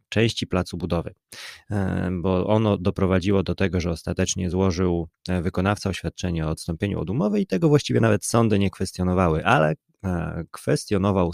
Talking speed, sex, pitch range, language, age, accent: 140 wpm, male, 85-110 Hz, Polish, 30-49, native